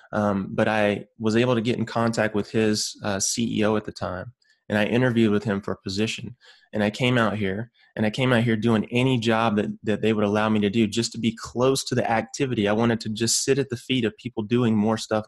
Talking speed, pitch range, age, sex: 255 wpm, 105-115 Hz, 20-39, male